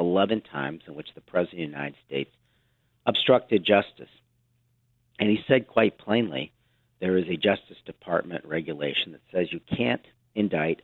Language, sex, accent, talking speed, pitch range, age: English, male, American, 155 wpm, 85-120 Hz, 50-69